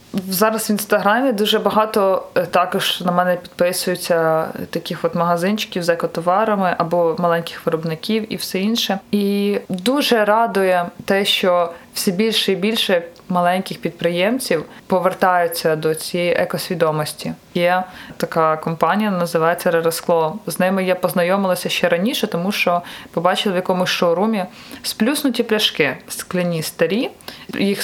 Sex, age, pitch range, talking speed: female, 20-39, 180-220 Hz, 125 wpm